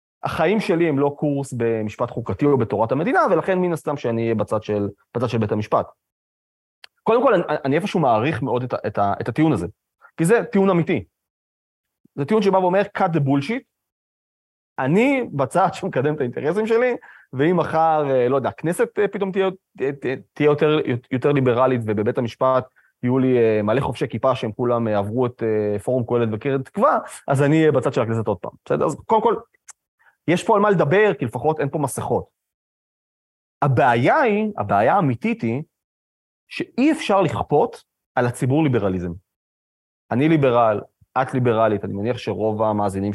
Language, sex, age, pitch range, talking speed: English, male, 30-49, 105-155 Hz, 155 wpm